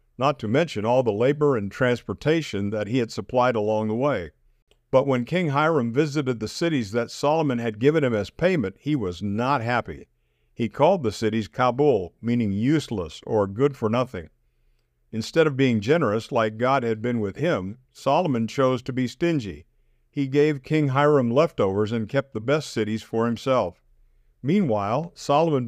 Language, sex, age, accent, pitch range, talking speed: English, male, 50-69, American, 110-145 Hz, 170 wpm